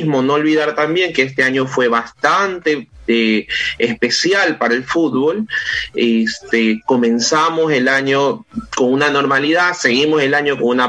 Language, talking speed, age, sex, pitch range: Spanish, 140 wpm, 30-49, male, 130-175 Hz